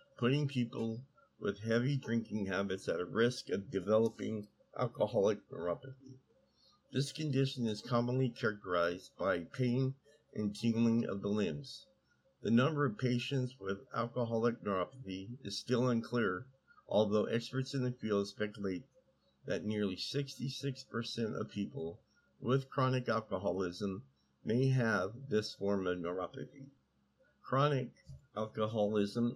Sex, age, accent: male, 50-69, American